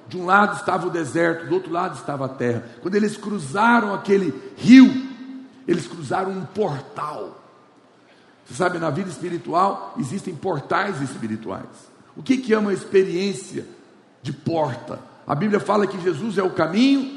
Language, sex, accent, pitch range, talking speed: Portuguese, male, Brazilian, 180-220 Hz, 155 wpm